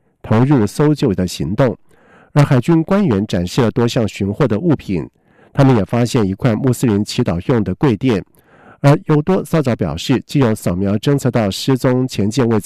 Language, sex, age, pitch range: French, male, 50-69, 105-140 Hz